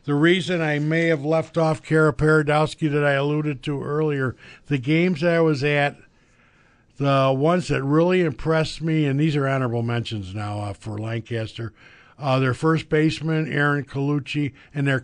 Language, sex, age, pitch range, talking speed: English, male, 50-69, 125-150 Hz, 170 wpm